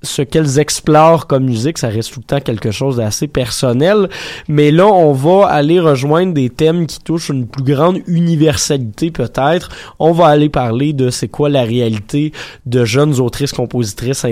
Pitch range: 120-155 Hz